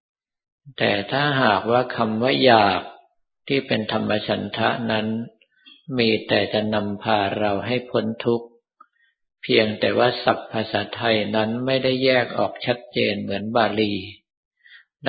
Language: Thai